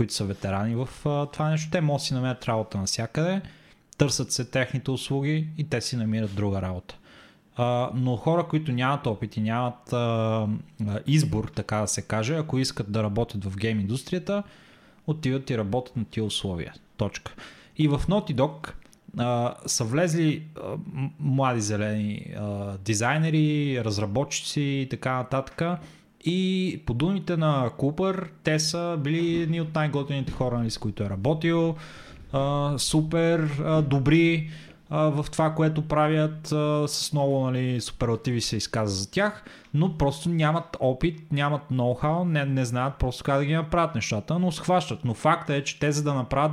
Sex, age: male, 20-39